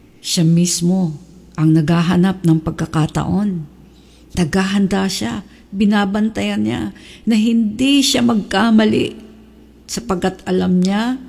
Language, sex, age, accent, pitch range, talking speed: English, female, 50-69, Filipino, 155-200 Hz, 90 wpm